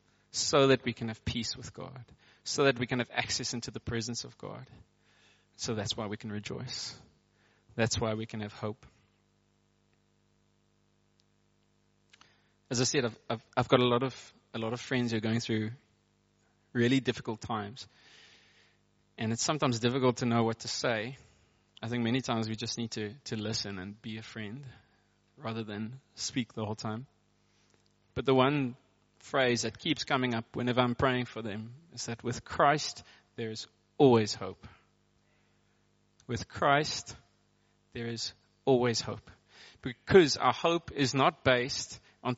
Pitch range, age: 110-125 Hz, 20-39